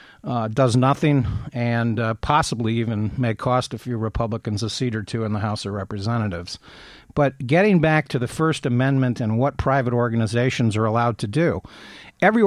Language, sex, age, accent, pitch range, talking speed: English, male, 50-69, American, 115-150 Hz, 180 wpm